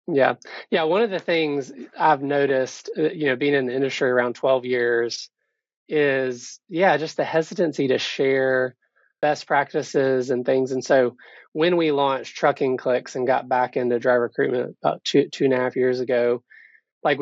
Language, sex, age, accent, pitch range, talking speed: English, male, 20-39, American, 130-150 Hz, 180 wpm